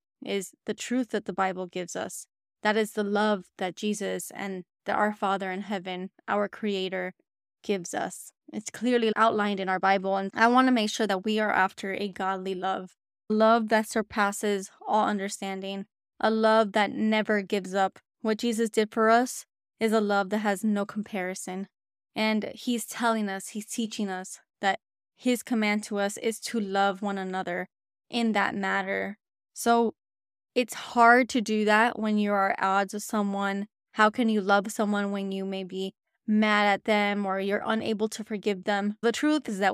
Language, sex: English, female